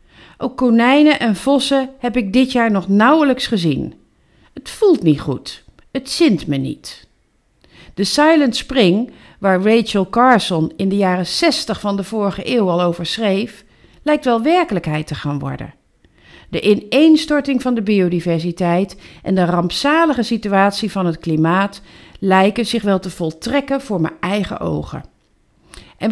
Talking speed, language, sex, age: 145 wpm, Dutch, female, 50-69